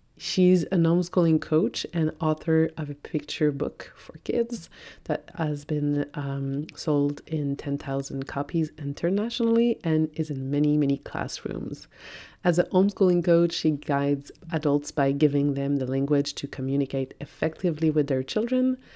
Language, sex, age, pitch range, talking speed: English, female, 30-49, 140-170 Hz, 140 wpm